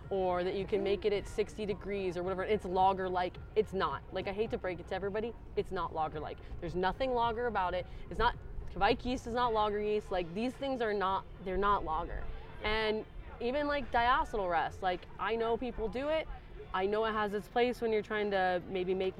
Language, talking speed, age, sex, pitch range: English, 225 wpm, 20-39, female, 185-220 Hz